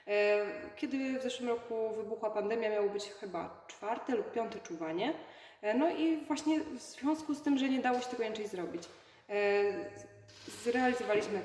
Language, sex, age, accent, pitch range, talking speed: Polish, female, 20-39, native, 200-240 Hz, 145 wpm